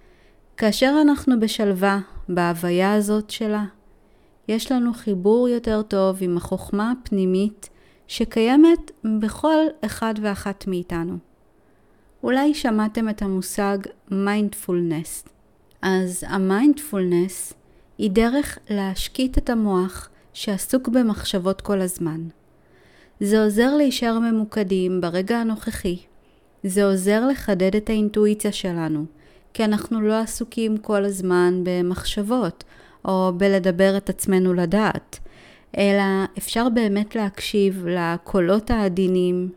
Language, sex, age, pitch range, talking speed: Hebrew, female, 30-49, 190-225 Hz, 100 wpm